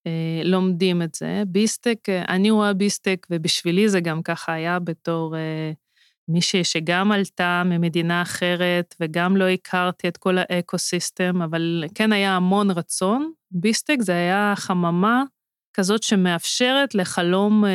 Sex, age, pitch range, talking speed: female, 30-49, 180-230 Hz, 120 wpm